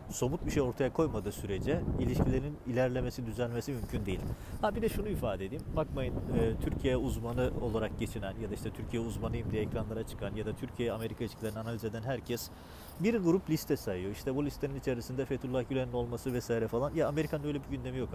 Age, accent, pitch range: 40-59, native, 110-135 Hz